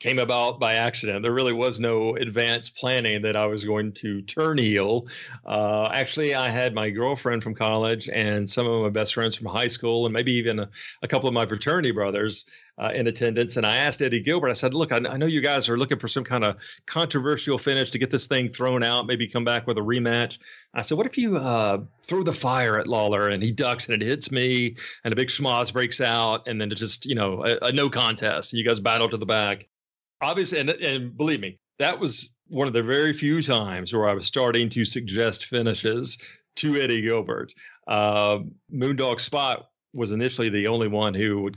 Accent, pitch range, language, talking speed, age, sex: American, 105-130 Hz, English, 220 wpm, 40-59, male